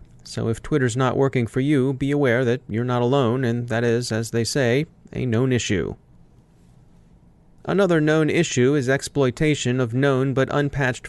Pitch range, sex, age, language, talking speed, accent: 110-140 Hz, male, 30-49, English, 170 wpm, American